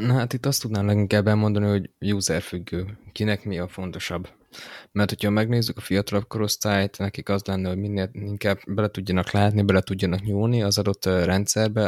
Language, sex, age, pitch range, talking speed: Hungarian, male, 20-39, 95-105 Hz, 175 wpm